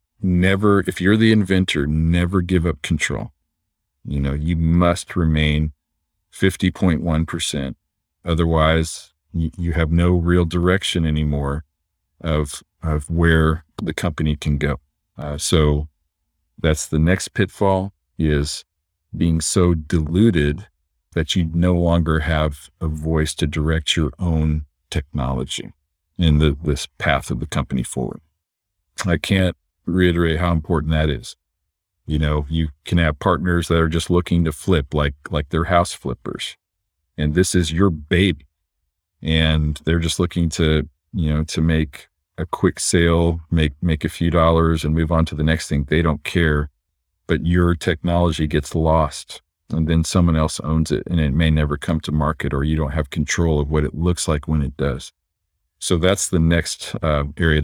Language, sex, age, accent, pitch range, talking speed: English, male, 50-69, American, 75-85 Hz, 160 wpm